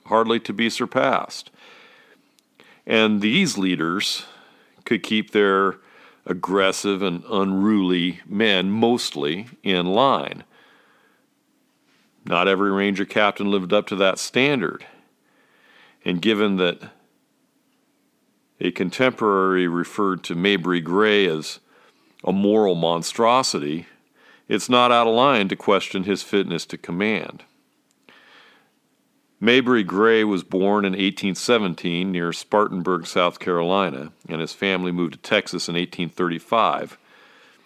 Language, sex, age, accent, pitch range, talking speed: English, male, 50-69, American, 90-105 Hz, 110 wpm